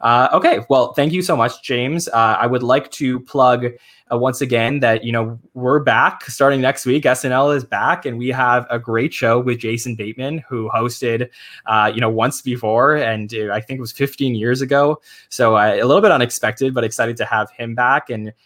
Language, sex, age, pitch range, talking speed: English, male, 20-39, 115-130 Hz, 210 wpm